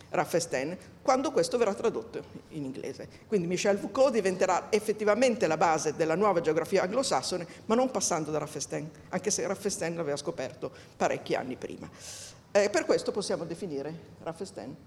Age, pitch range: 50-69, 170-220 Hz